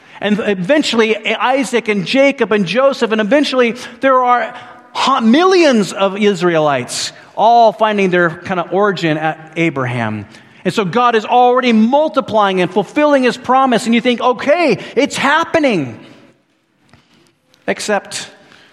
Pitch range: 180-245 Hz